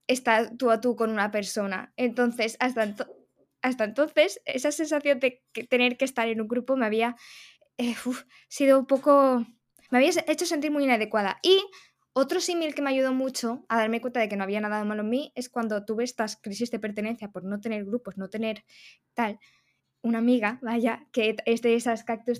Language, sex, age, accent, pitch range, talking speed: Spanish, female, 10-29, Spanish, 220-265 Hz, 205 wpm